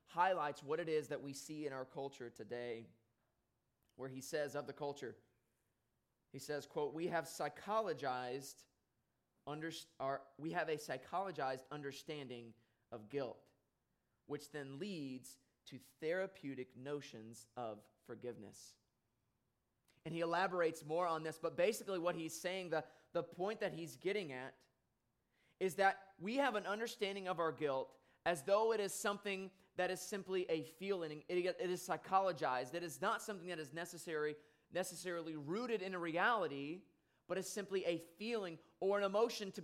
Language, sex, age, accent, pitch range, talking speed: English, male, 20-39, American, 130-185 Hz, 155 wpm